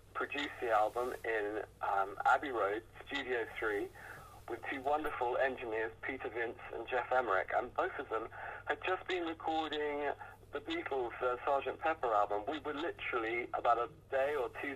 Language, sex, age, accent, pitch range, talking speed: English, male, 50-69, British, 120-185 Hz, 165 wpm